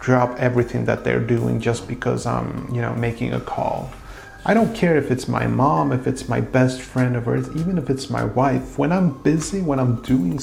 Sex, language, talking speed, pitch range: male, English, 220 wpm, 120-145 Hz